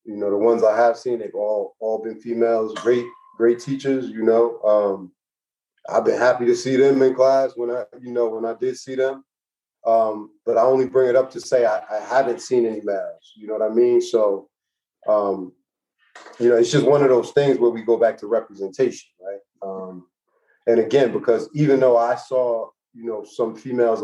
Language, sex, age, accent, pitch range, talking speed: English, male, 30-49, American, 110-140 Hz, 210 wpm